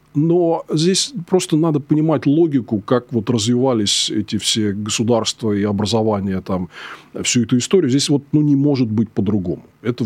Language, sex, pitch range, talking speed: Russian, male, 110-135 Hz, 155 wpm